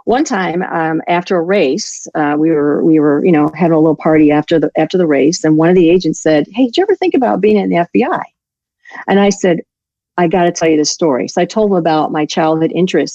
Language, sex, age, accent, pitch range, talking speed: English, female, 40-59, American, 155-195 Hz, 255 wpm